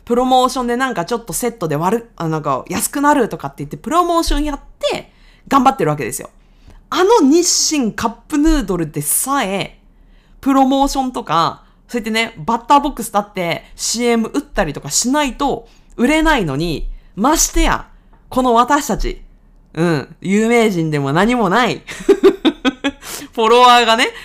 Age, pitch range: 20-39, 175-275 Hz